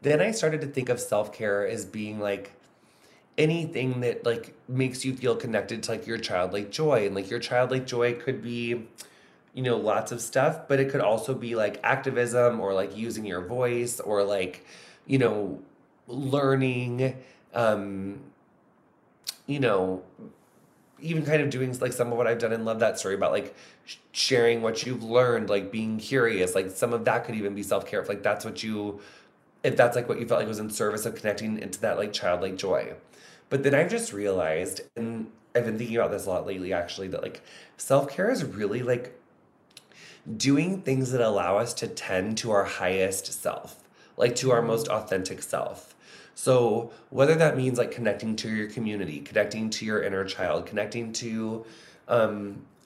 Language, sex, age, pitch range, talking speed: English, male, 20-39, 105-130 Hz, 185 wpm